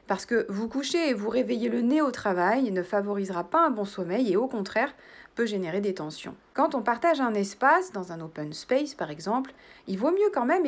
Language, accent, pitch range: French, French, 185-270 Hz